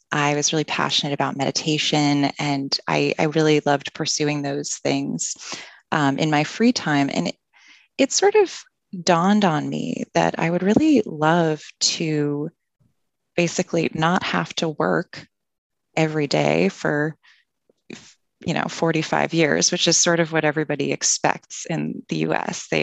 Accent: American